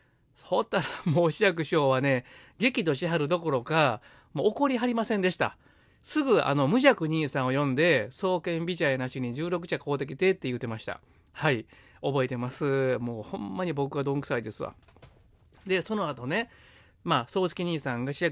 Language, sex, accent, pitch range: Japanese, male, native, 130-190 Hz